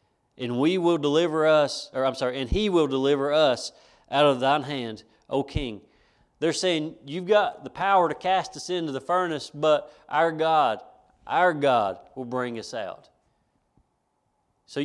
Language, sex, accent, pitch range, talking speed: English, male, American, 135-175 Hz, 165 wpm